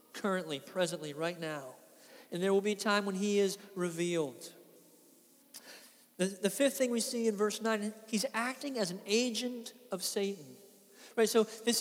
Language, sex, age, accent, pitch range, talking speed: English, male, 40-59, American, 175-220 Hz, 170 wpm